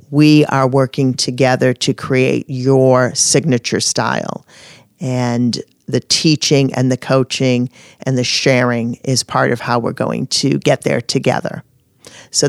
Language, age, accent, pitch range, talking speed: English, 40-59, American, 130-155 Hz, 140 wpm